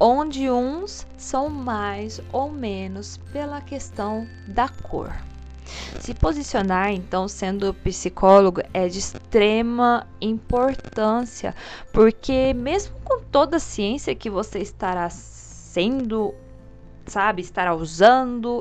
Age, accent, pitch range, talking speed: 20-39, Brazilian, 175-230 Hz, 105 wpm